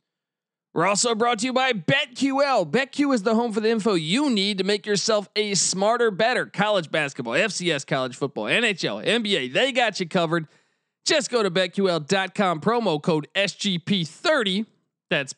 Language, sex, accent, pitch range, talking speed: English, male, American, 170-235 Hz, 160 wpm